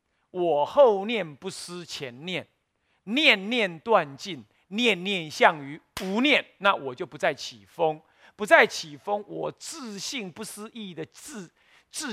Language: Chinese